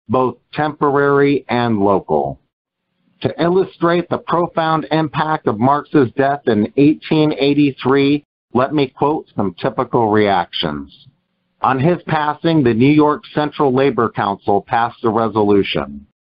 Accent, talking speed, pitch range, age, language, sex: American, 120 wpm, 115-155 Hz, 50-69, English, male